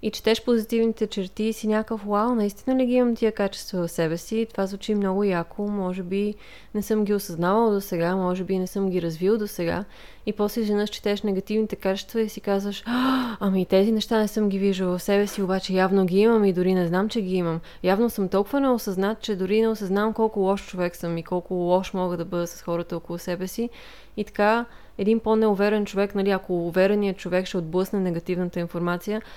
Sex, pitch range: female, 180-210 Hz